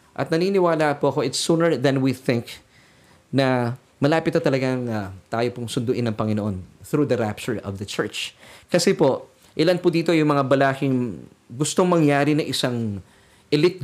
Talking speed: 165 wpm